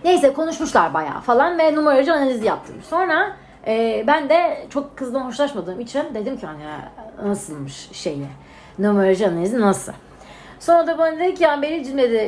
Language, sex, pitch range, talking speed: Turkish, female, 215-310 Hz, 150 wpm